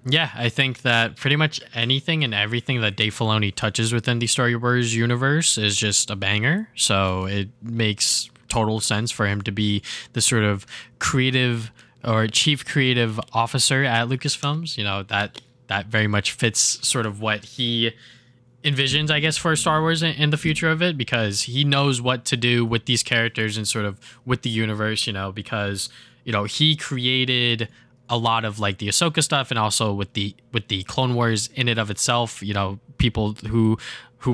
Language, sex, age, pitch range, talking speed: English, male, 20-39, 105-125 Hz, 190 wpm